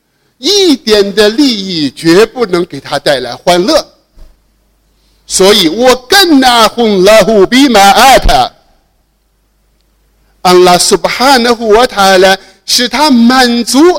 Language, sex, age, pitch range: Chinese, male, 50-69, 175-255 Hz